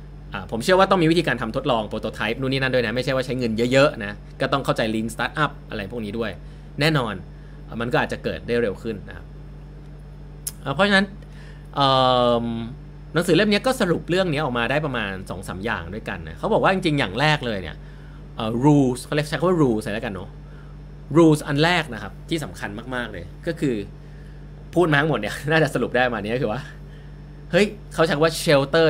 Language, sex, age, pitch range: Thai, male, 20-39, 120-150 Hz